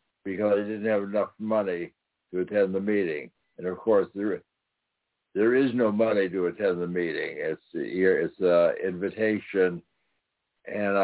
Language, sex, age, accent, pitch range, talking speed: English, male, 60-79, American, 100-115 Hz, 150 wpm